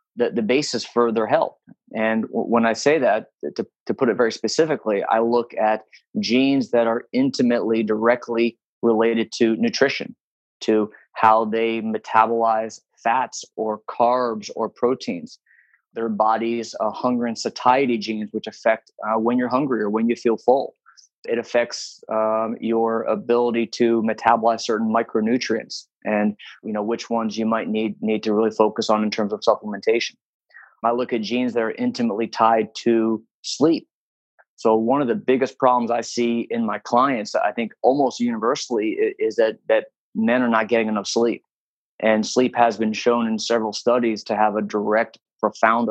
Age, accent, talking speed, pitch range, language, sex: 20-39, American, 165 wpm, 110-120 Hz, English, male